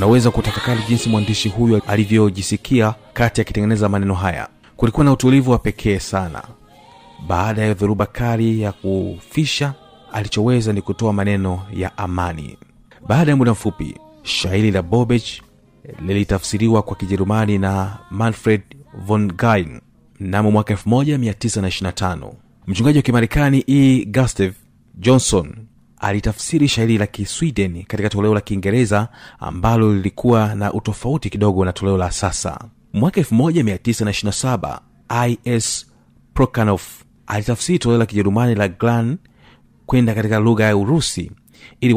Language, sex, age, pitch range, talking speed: Swahili, male, 30-49, 100-120 Hz, 120 wpm